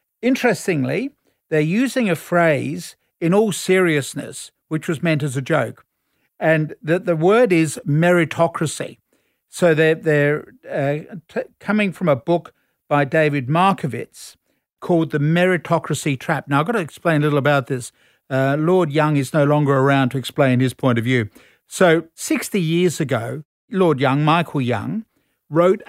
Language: English